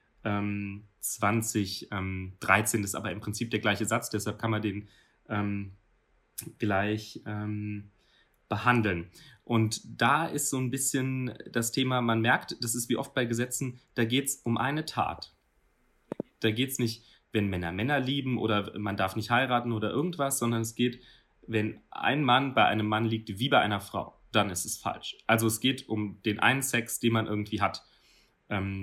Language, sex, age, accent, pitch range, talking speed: German, male, 30-49, German, 105-125 Hz, 175 wpm